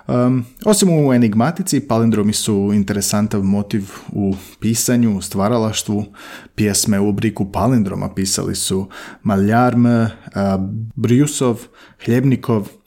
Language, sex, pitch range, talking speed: Croatian, male, 105-125 Hz, 105 wpm